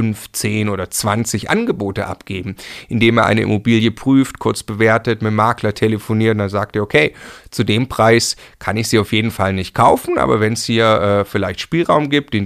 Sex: male